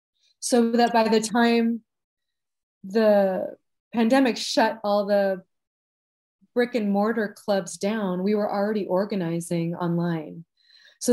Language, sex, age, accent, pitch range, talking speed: French, female, 30-49, American, 185-220 Hz, 115 wpm